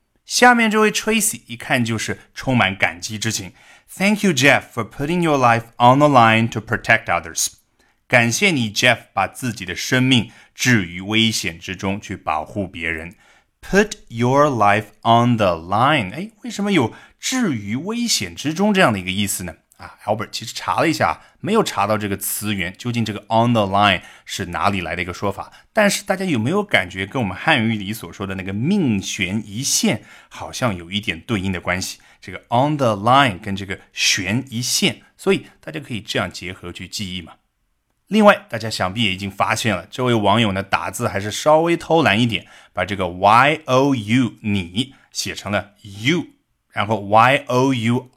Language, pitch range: Chinese, 100-135 Hz